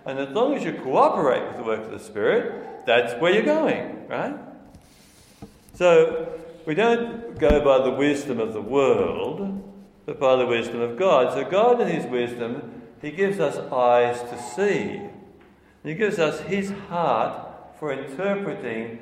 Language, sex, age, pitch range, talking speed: English, male, 60-79, 120-175 Hz, 160 wpm